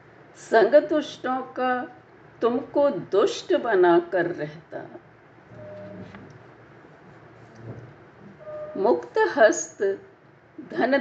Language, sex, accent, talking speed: Hindi, female, native, 55 wpm